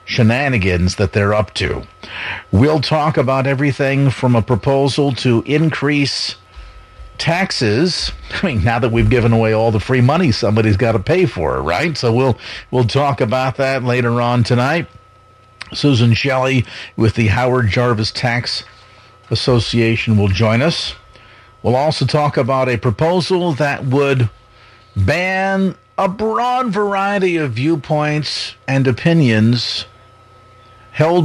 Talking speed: 135 wpm